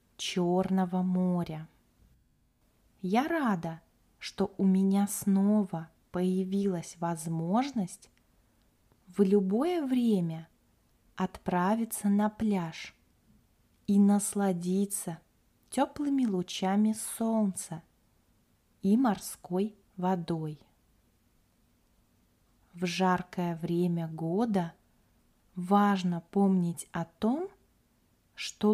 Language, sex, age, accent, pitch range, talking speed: Russian, female, 20-39, native, 175-215 Hz, 70 wpm